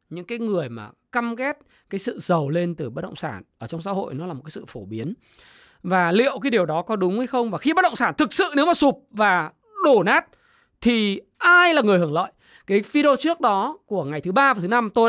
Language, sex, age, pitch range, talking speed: Vietnamese, male, 20-39, 185-260 Hz, 260 wpm